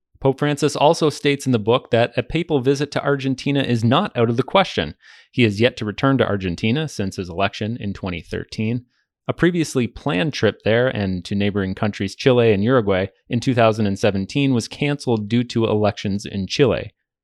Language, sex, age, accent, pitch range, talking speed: English, male, 30-49, American, 105-130 Hz, 180 wpm